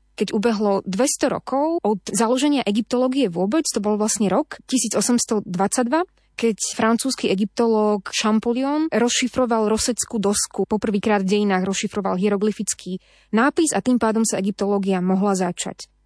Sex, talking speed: female, 125 wpm